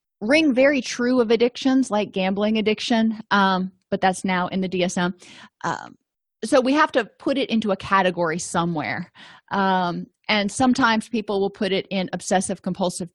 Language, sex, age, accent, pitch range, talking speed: English, female, 30-49, American, 175-205 Hz, 165 wpm